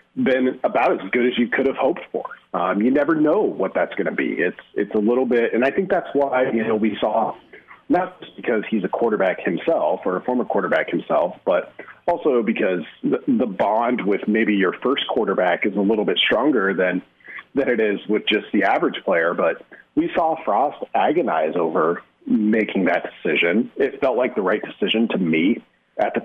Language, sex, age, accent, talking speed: English, male, 40-59, American, 205 wpm